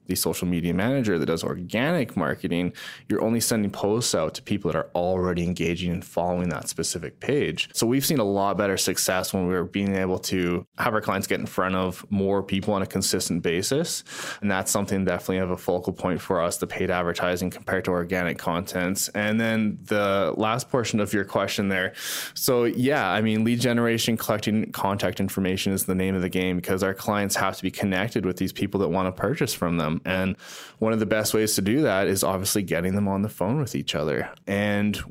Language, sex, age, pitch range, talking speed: English, male, 20-39, 95-110 Hz, 215 wpm